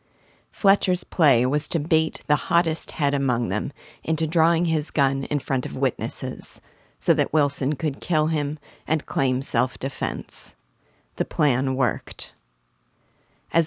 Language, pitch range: English, 130-160 Hz